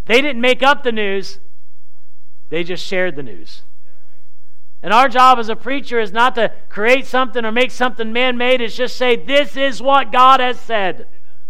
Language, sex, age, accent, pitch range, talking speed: English, male, 40-59, American, 210-265 Hz, 190 wpm